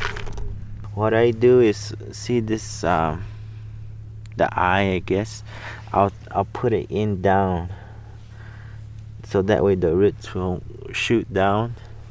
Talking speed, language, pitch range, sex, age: 125 wpm, English, 95-110 Hz, male, 20-39